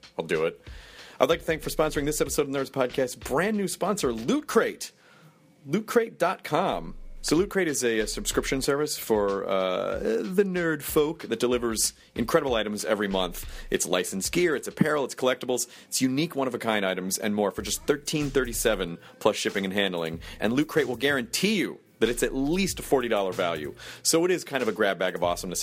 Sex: male